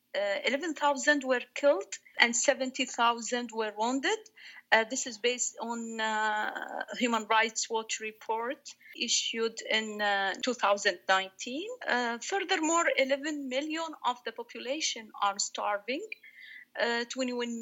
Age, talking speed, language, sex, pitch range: 40-59, 110 wpm, English, female, 220-275 Hz